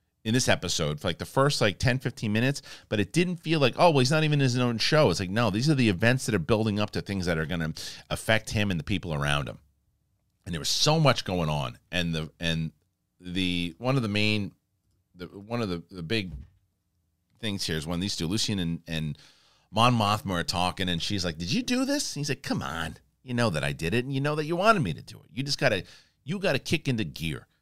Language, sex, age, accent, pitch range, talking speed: English, male, 40-59, American, 85-125 Hz, 255 wpm